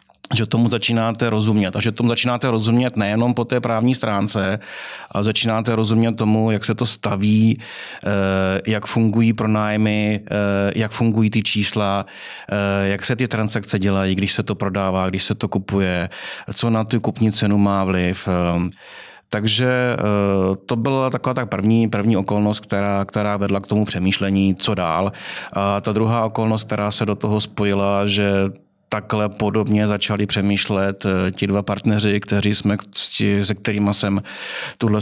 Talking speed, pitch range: 150 wpm, 100-110 Hz